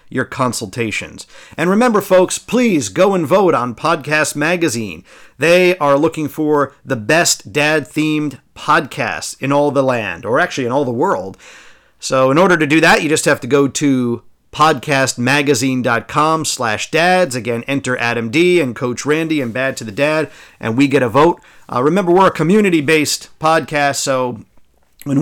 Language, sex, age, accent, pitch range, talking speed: English, male, 50-69, American, 135-170 Hz, 165 wpm